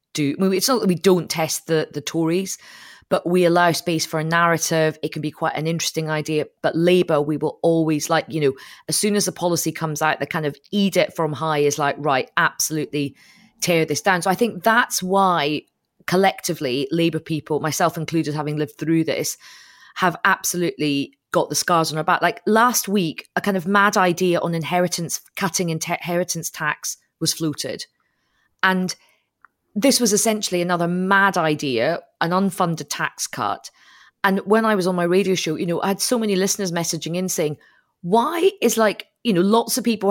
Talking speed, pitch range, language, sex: 195 wpm, 160-200 Hz, English, female